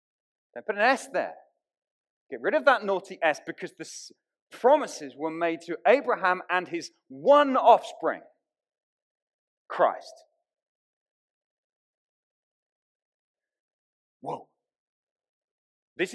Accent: British